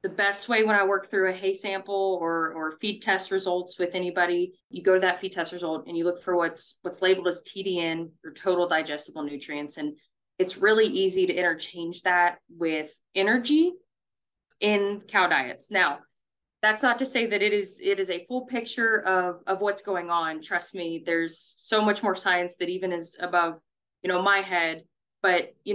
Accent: American